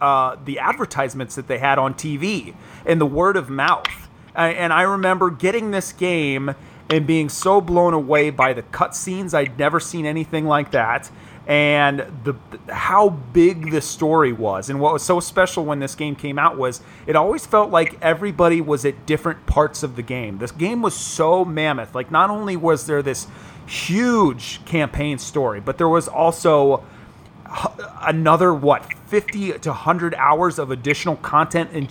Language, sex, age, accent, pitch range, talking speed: English, male, 30-49, American, 145-180 Hz, 175 wpm